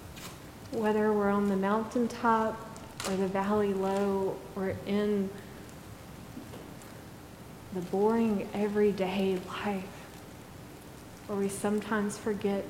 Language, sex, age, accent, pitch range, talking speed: English, female, 30-49, American, 195-215 Hz, 90 wpm